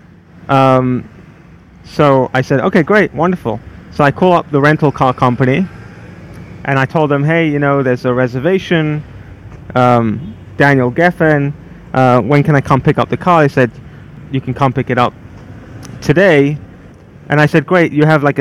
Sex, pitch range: male, 125-155 Hz